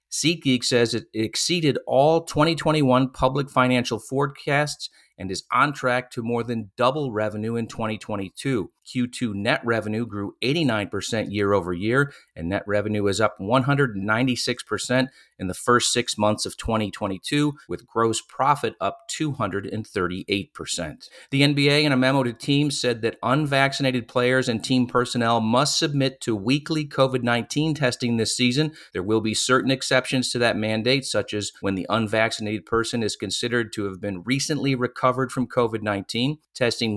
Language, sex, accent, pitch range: English, male, American, 110-135 Hz